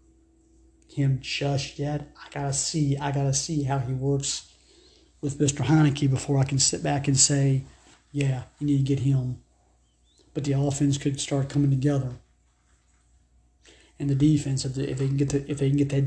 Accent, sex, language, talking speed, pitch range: American, male, English, 185 wpm, 125-140 Hz